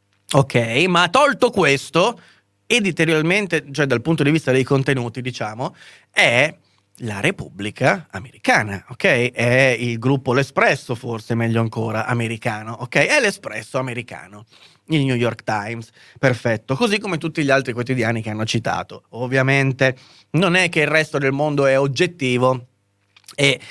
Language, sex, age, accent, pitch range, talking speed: Italian, male, 30-49, native, 120-155 Hz, 140 wpm